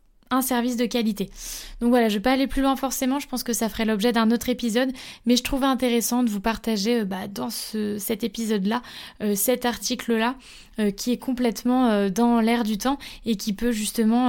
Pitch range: 205-245 Hz